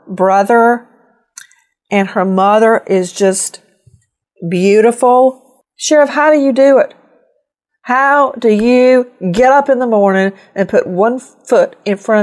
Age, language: 50-69, English